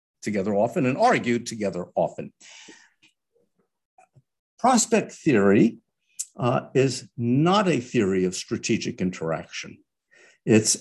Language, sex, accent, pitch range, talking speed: English, male, American, 115-170 Hz, 95 wpm